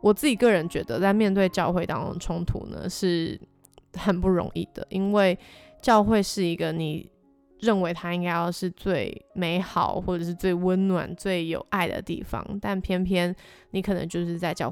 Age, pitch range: 20-39, 175-195 Hz